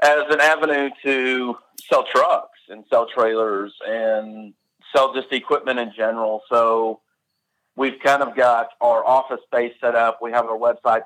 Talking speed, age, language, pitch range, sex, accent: 155 wpm, 40-59, English, 110-125 Hz, male, American